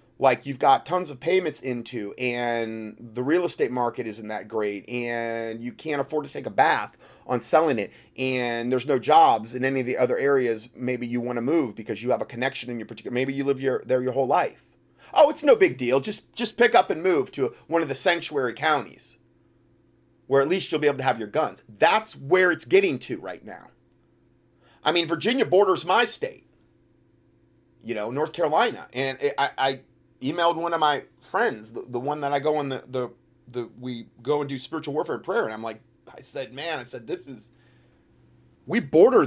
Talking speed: 210 wpm